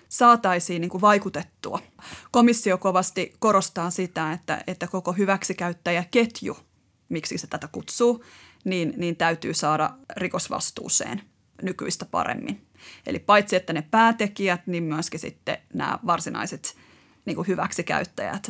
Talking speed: 105 wpm